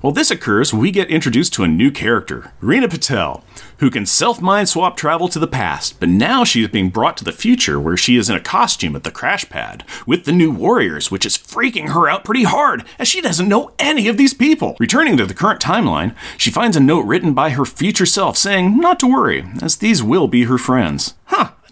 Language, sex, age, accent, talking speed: English, male, 40-59, American, 230 wpm